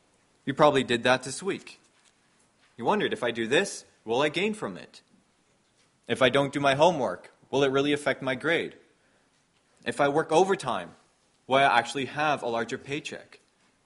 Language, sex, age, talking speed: English, male, 20-39, 175 wpm